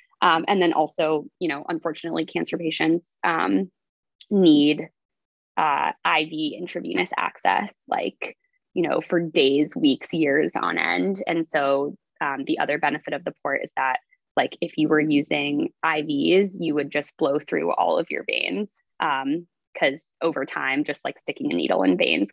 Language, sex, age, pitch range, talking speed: English, female, 20-39, 155-260 Hz, 165 wpm